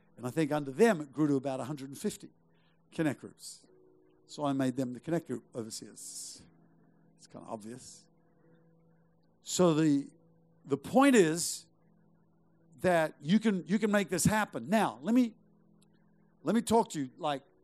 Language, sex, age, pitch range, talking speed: English, male, 60-79, 125-180 Hz, 155 wpm